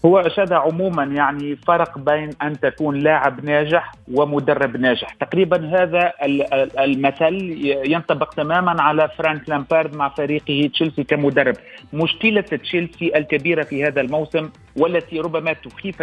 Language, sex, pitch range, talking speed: Arabic, male, 155-195 Hz, 125 wpm